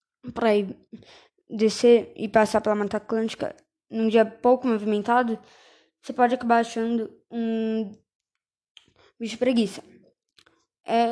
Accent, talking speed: Brazilian, 105 wpm